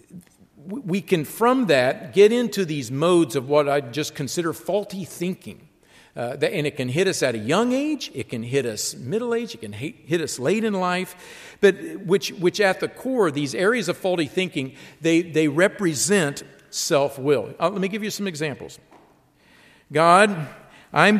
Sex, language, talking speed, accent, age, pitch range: male, English, 175 wpm, American, 50-69, 140-195 Hz